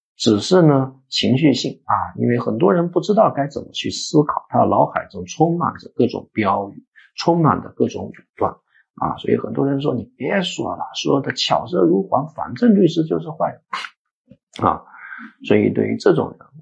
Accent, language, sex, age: native, Chinese, male, 50-69